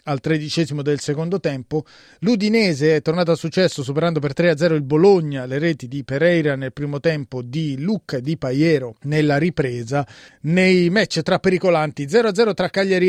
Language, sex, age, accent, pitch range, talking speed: Italian, male, 30-49, native, 145-175 Hz, 165 wpm